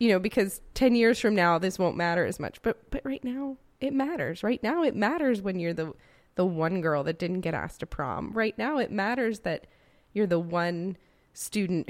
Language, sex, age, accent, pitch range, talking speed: English, female, 20-39, American, 170-220 Hz, 215 wpm